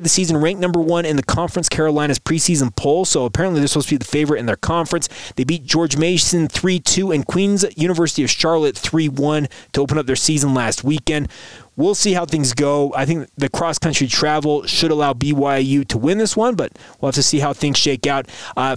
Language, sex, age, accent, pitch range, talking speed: English, male, 20-39, American, 130-160 Hz, 215 wpm